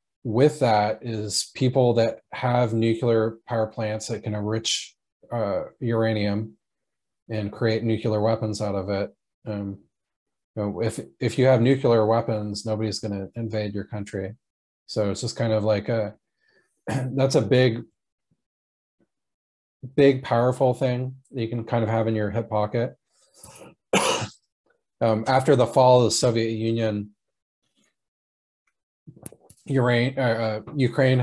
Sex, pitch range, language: male, 105-120 Hz, English